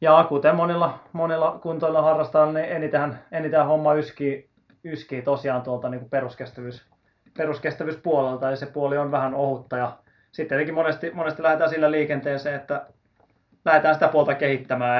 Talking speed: 135 wpm